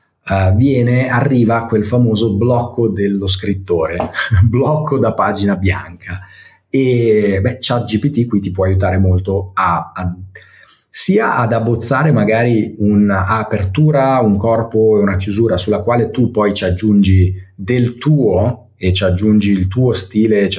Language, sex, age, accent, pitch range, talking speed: Italian, male, 30-49, native, 95-120 Hz, 140 wpm